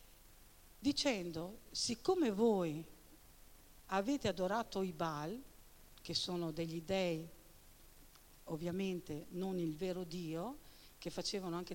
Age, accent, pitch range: 50-69, native, 175-250 Hz